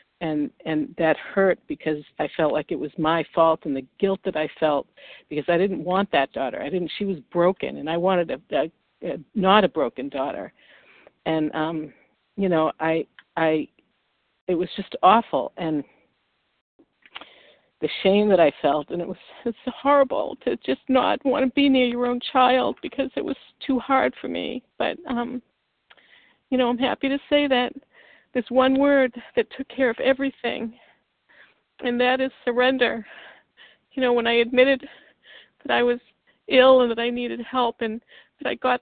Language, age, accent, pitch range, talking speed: English, 50-69, American, 195-255 Hz, 180 wpm